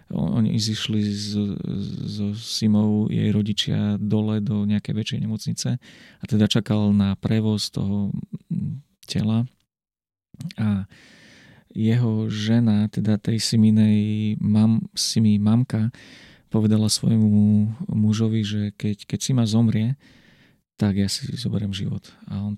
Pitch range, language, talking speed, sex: 105-115 Hz, Slovak, 115 wpm, male